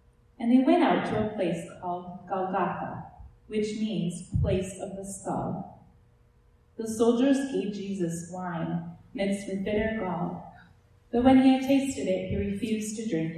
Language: English